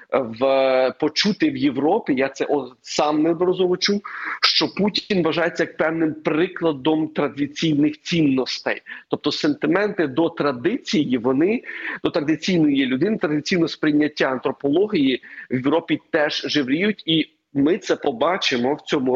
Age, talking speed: 40-59, 115 wpm